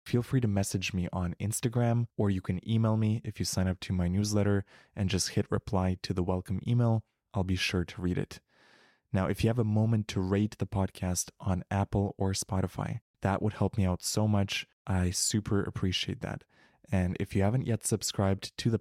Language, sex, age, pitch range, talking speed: English, male, 20-39, 95-110 Hz, 210 wpm